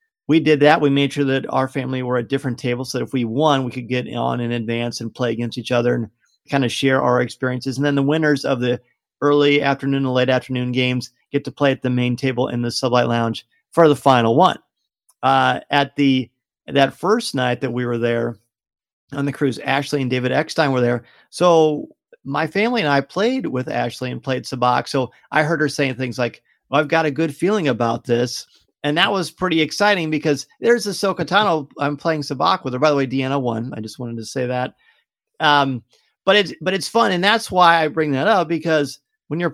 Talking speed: 225 wpm